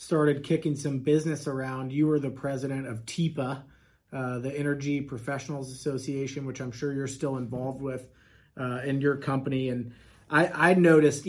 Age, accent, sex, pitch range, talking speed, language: 30-49, American, male, 130-150 Hz, 165 wpm, English